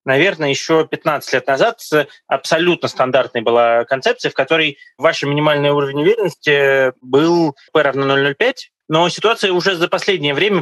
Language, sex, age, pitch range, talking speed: Russian, male, 20-39, 135-165 Hz, 140 wpm